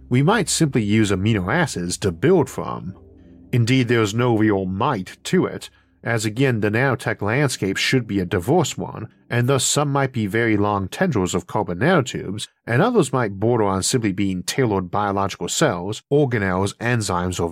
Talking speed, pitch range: 170 wpm, 100-135 Hz